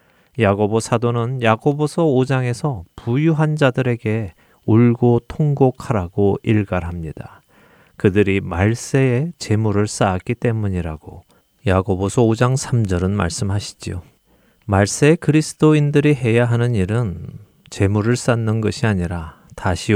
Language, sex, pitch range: Korean, male, 100-130 Hz